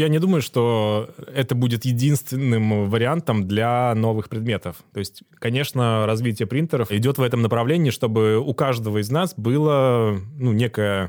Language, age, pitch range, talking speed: Russian, 20-39, 100-120 Hz, 145 wpm